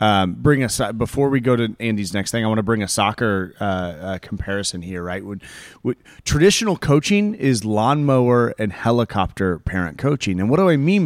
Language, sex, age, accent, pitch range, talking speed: English, male, 30-49, American, 110-150 Hz, 195 wpm